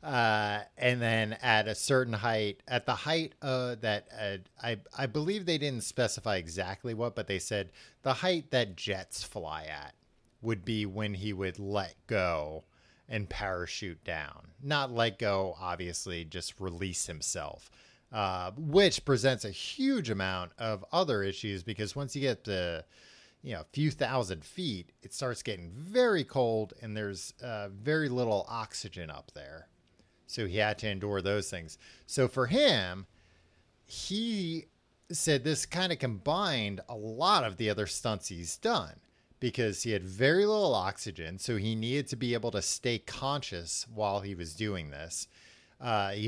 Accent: American